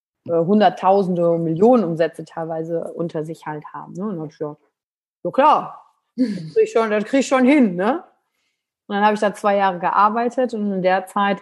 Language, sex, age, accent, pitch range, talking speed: German, female, 30-49, German, 175-210 Hz, 185 wpm